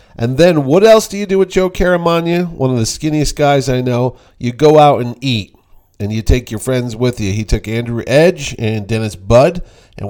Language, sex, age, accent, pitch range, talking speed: English, male, 40-59, American, 105-140 Hz, 220 wpm